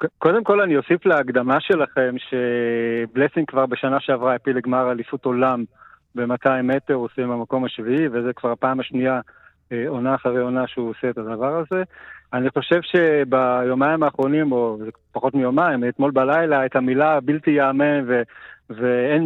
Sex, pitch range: male, 125-145 Hz